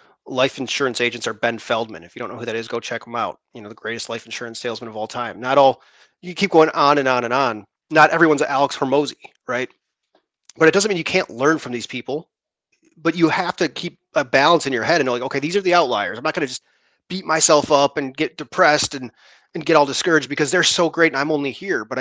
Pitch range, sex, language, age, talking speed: 130-160 Hz, male, English, 30-49, 260 wpm